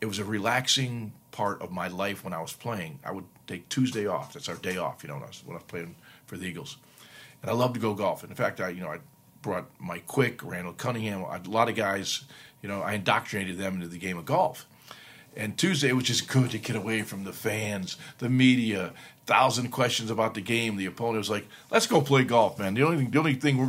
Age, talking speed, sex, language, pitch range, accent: 40-59, 245 wpm, male, English, 100-130 Hz, American